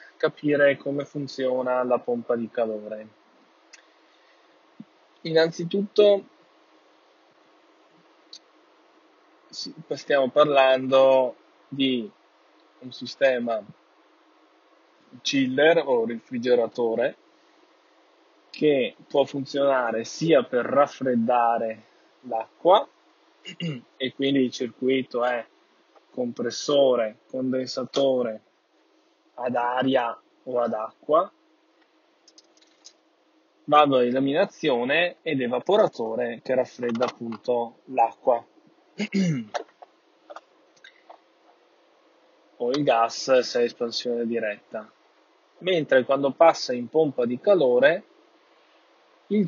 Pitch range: 120-150 Hz